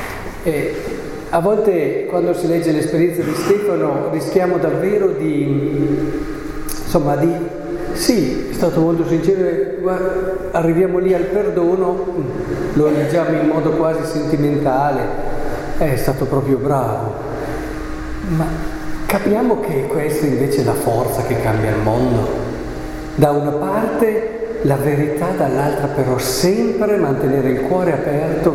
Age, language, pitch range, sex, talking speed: 50-69, Italian, 145-195 Hz, male, 120 wpm